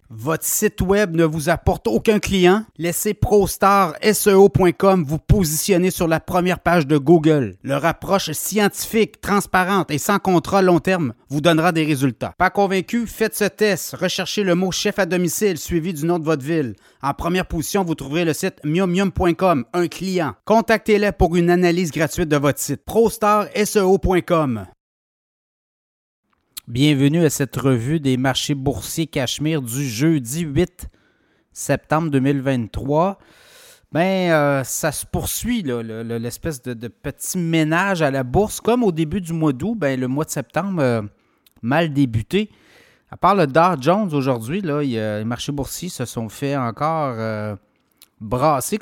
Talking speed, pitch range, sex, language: 155 wpm, 140-190 Hz, male, French